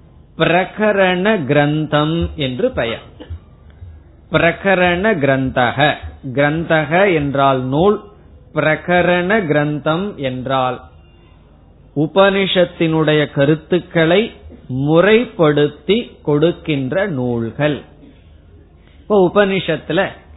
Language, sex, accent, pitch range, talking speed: Tamil, male, native, 130-185 Hz, 55 wpm